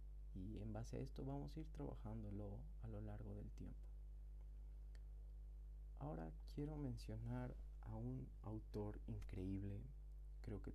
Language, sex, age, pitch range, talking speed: Spanish, male, 30-49, 75-120 Hz, 130 wpm